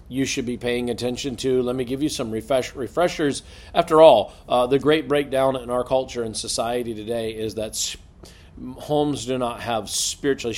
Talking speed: 185 wpm